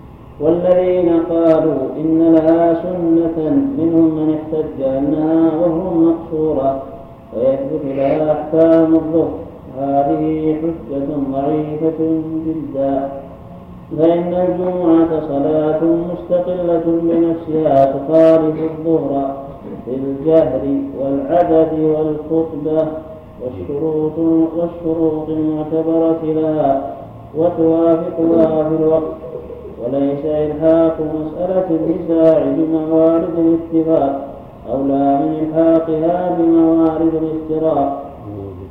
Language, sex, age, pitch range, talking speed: Arabic, male, 40-59, 150-165 Hz, 75 wpm